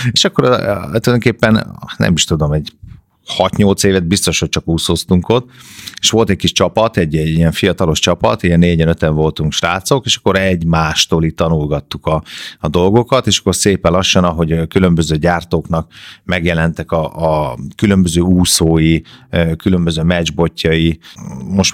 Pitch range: 85-100 Hz